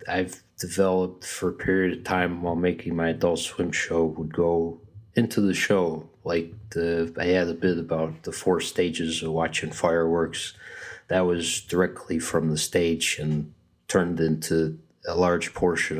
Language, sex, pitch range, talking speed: English, male, 80-95 Hz, 160 wpm